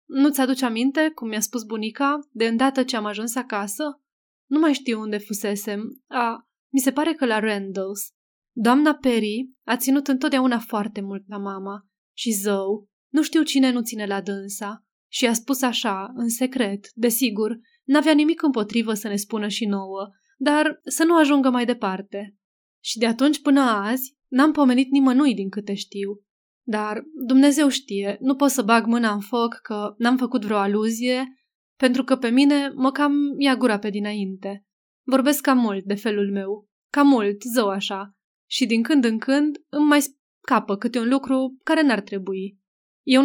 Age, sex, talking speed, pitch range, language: 20-39, female, 175 wpm, 210-275 Hz, Romanian